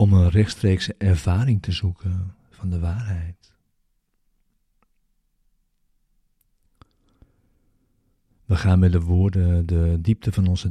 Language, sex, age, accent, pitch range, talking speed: Dutch, male, 40-59, Dutch, 85-105 Hz, 100 wpm